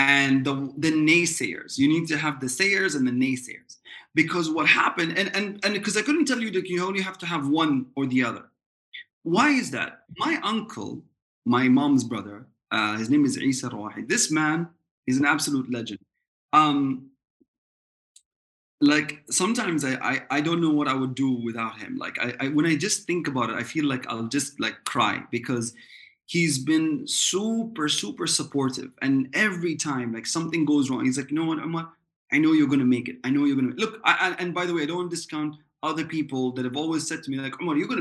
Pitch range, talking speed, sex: 135-180 Hz, 215 wpm, male